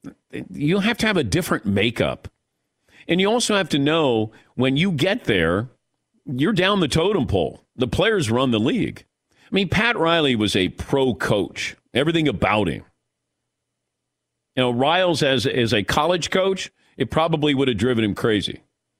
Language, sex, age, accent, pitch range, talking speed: English, male, 50-69, American, 120-160 Hz, 165 wpm